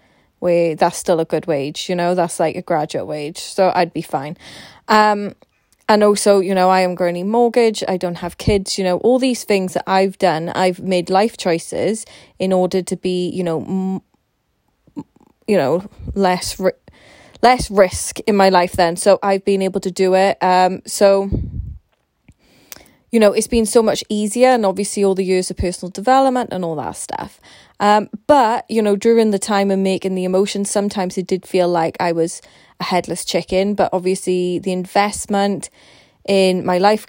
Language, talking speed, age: English, 185 wpm, 20-39